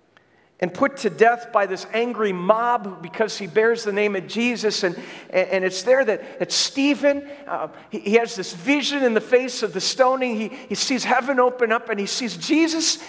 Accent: American